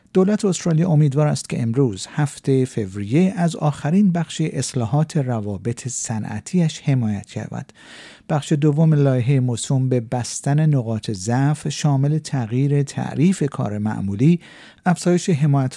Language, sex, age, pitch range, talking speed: Persian, male, 50-69, 120-160 Hz, 120 wpm